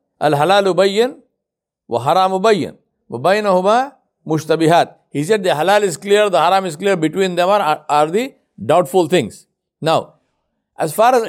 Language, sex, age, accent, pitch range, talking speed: English, male, 60-79, Indian, 155-225 Hz, 110 wpm